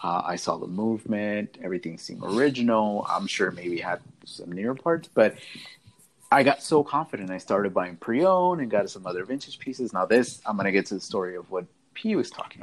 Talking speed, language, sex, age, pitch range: 210 wpm, English, male, 30-49, 95-140 Hz